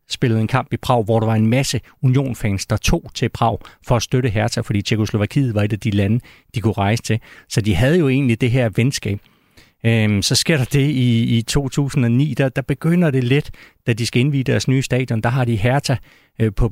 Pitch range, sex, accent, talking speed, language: 110-130 Hz, male, native, 230 wpm, Danish